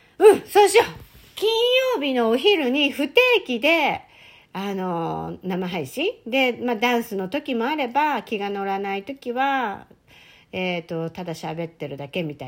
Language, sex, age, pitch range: Japanese, female, 50-69, 175-260 Hz